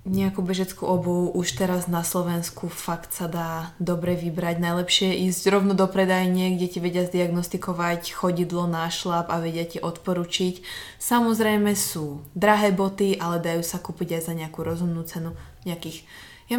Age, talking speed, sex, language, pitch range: 20-39, 155 wpm, female, Slovak, 170-195 Hz